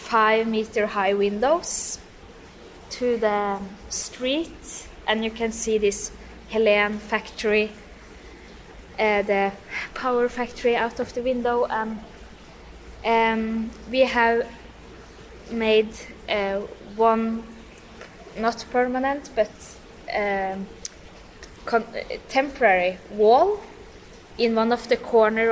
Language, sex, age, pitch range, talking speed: English, female, 20-39, 205-230 Hz, 100 wpm